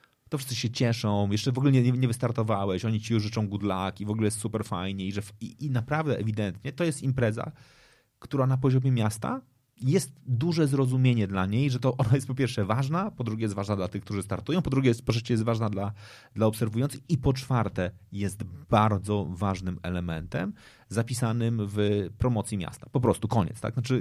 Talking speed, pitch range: 200 wpm, 100-125 Hz